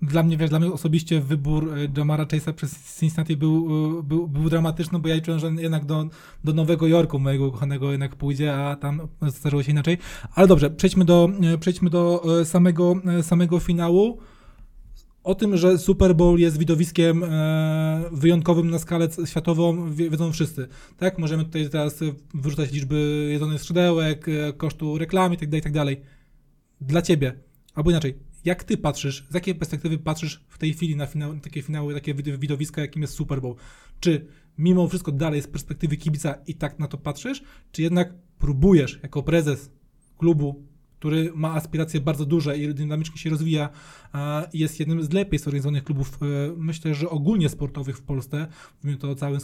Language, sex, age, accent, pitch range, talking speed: Polish, male, 20-39, native, 145-165 Hz, 160 wpm